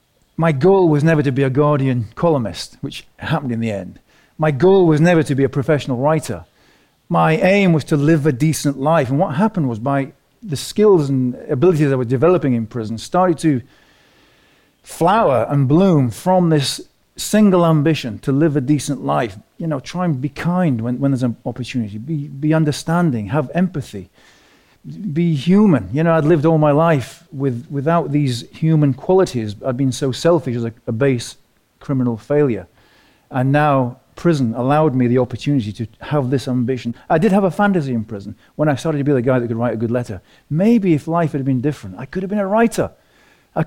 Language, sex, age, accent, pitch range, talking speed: English, male, 40-59, British, 125-170 Hz, 195 wpm